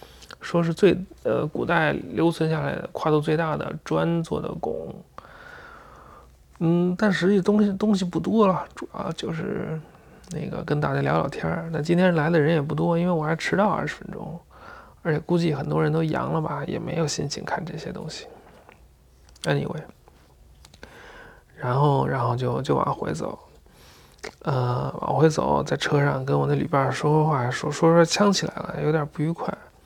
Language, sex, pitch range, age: English, male, 140-175 Hz, 30-49